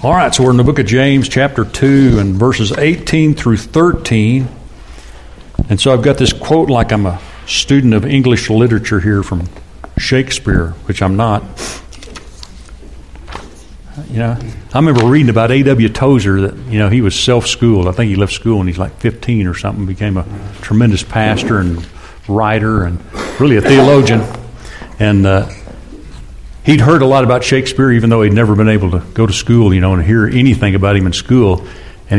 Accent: American